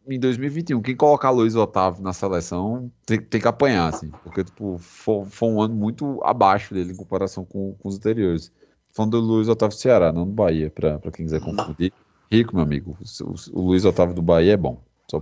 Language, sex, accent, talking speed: Portuguese, male, Brazilian, 210 wpm